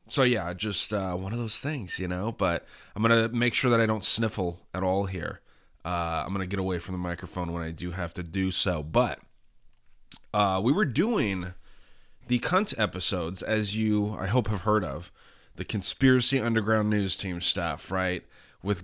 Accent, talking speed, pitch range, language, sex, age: American, 200 wpm, 100-125 Hz, English, male, 20-39